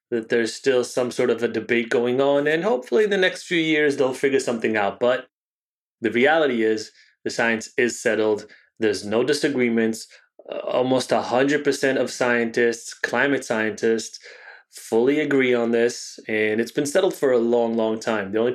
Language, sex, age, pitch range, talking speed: English, male, 20-39, 110-125 Hz, 170 wpm